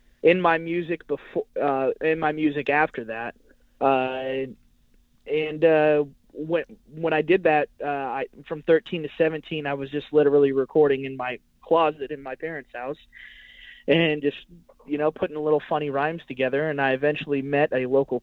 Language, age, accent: English, 20-39, American